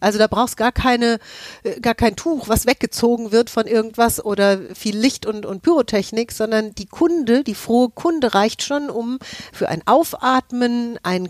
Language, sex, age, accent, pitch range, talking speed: German, female, 40-59, German, 190-235 Hz, 170 wpm